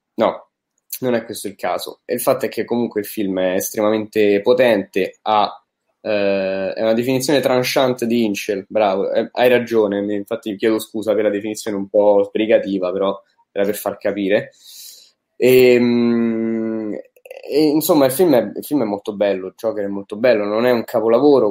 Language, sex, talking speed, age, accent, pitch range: Italian, male, 175 wpm, 10-29, native, 100-125 Hz